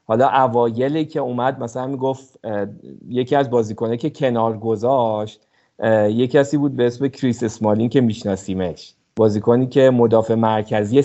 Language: Persian